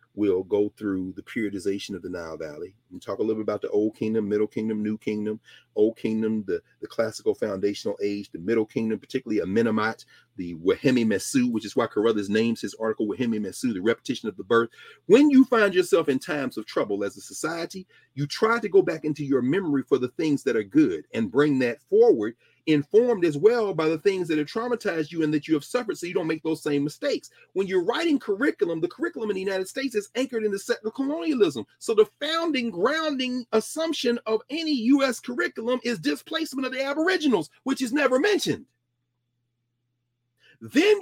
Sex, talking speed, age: male, 200 wpm, 40-59